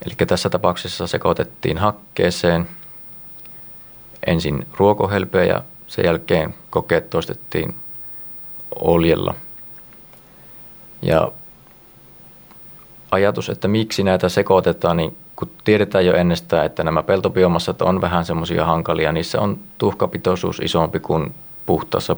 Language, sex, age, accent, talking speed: Finnish, male, 30-49, native, 100 wpm